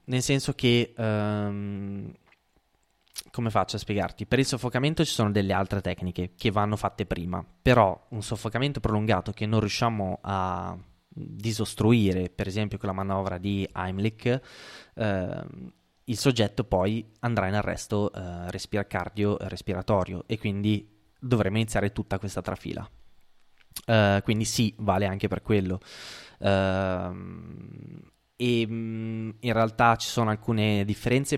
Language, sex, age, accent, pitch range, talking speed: Italian, male, 20-39, native, 95-110 Hz, 130 wpm